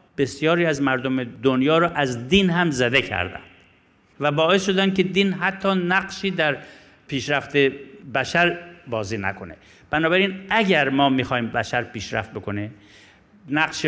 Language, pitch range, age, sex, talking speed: Persian, 110-155 Hz, 50-69, male, 130 wpm